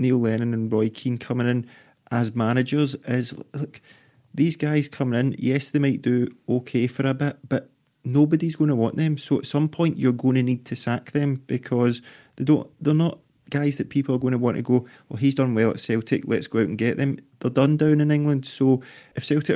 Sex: male